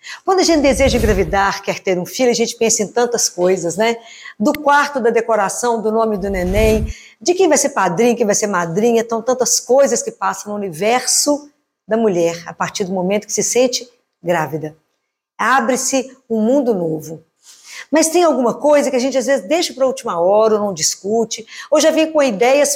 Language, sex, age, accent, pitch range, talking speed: Portuguese, female, 50-69, Brazilian, 195-270 Hz, 200 wpm